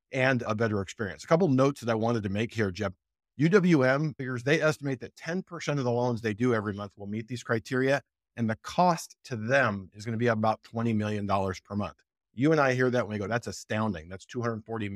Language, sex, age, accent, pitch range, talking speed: English, male, 50-69, American, 105-130 Hz, 230 wpm